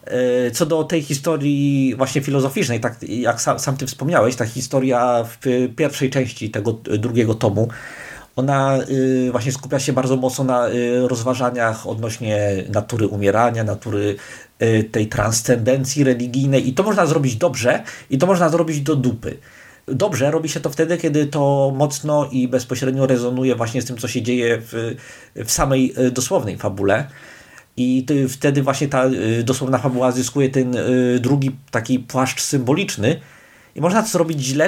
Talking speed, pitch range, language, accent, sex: 150 wpm, 125-145 Hz, Polish, native, male